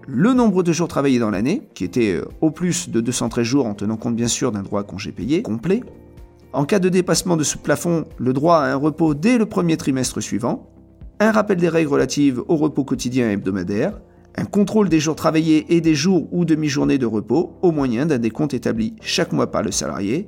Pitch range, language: 120-175 Hz, French